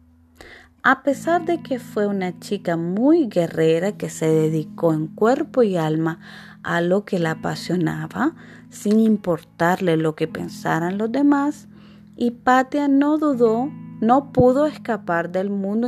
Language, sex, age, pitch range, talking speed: Spanish, female, 30-49, 175-250 Hz, 140 wpm